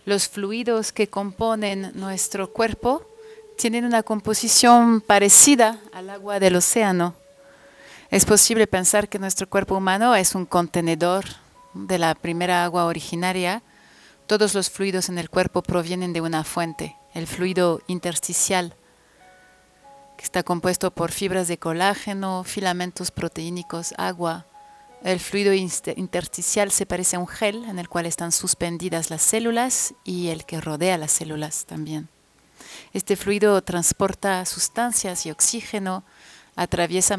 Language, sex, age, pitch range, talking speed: Spanish, female, 30-49, 175-205 Hz, 130 wpm